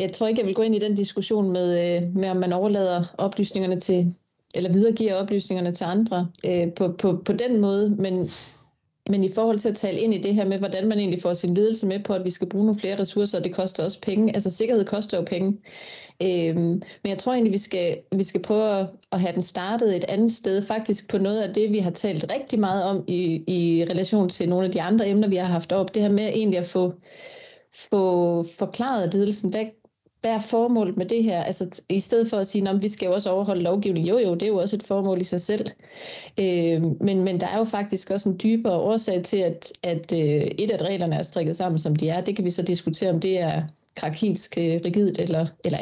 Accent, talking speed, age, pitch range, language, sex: native, 240 wpm, 30-49, 180-210 Hz, Danish, female